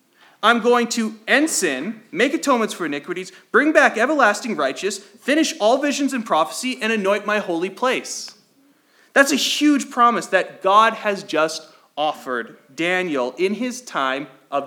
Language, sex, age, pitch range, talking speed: English, male, 30-49, 180-265 Hz, 150 wpm